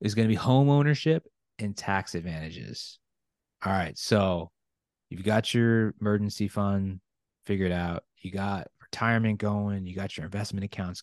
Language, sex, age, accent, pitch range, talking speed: English, male, 30-49, American, 95-110 Hz, 150 wpm